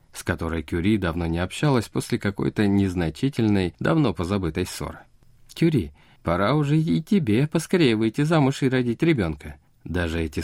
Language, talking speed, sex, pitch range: Russian, 145 wpm, male, 80-110 Hz